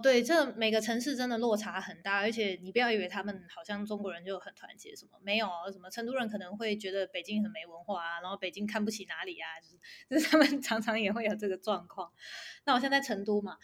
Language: Chinese